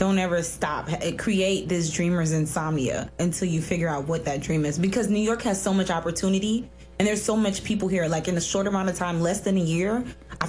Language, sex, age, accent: English, female, 20-39, American